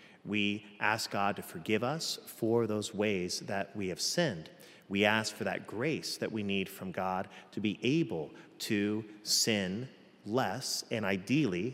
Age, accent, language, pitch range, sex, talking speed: 40-59, American, English, 95-115 Hz, male, 160 wpm